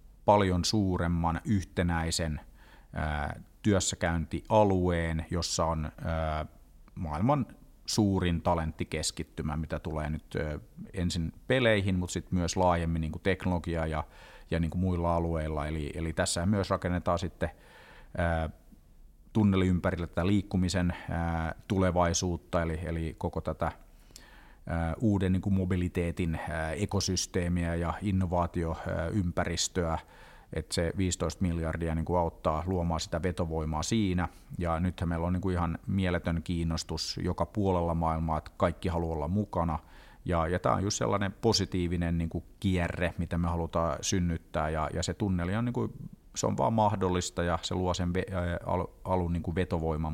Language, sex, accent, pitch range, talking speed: Finnish, male, native, 80-95 Hz, 120 wpm